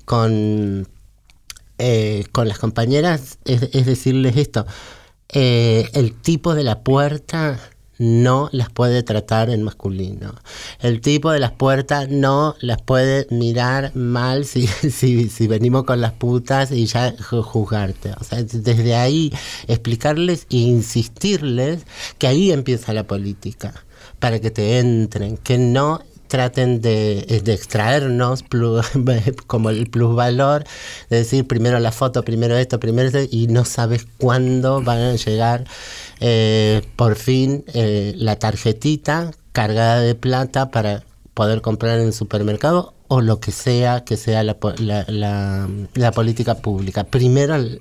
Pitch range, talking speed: 110-130 Hz, 140 wpm